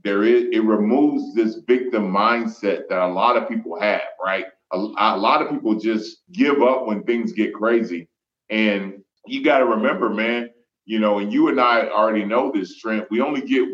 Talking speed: 195 wpm